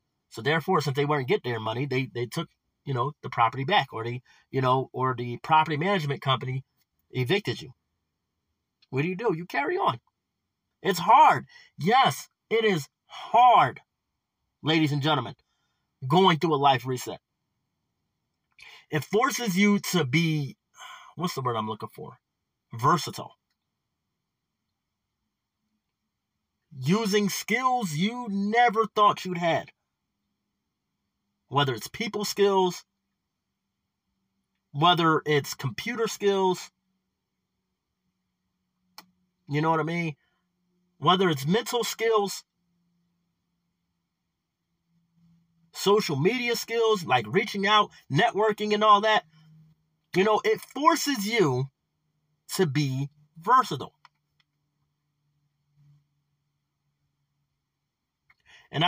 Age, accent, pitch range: 30-49, American, 135-195 Hz